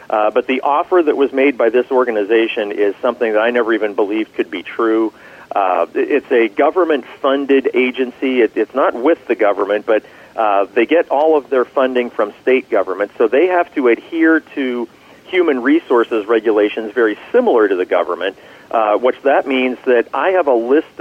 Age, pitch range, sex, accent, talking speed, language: 40-59, 115-150 Hz, male, American, 190 wpm, English